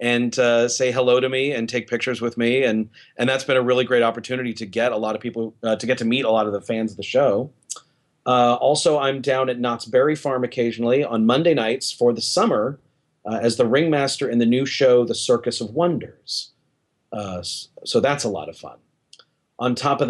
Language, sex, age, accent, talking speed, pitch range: English, male, 30-49, American, 225 wpm, 110-125 Hz